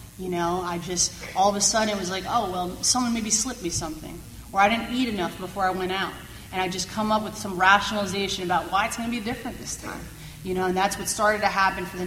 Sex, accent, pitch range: female, American, 185-215 Hz